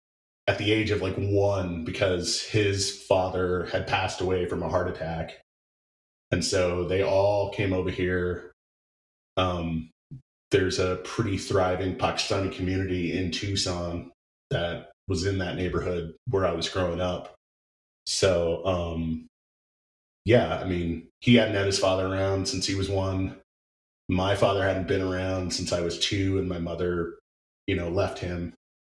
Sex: male